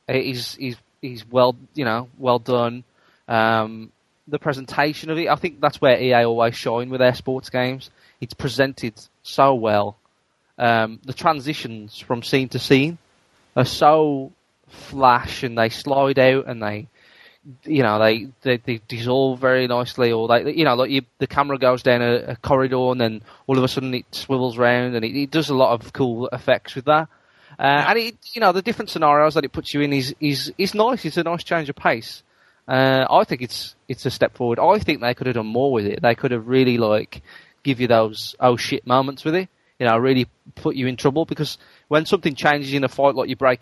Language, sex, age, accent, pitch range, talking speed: English, male, 20-39, British, 120-140 Hz, 215 wpm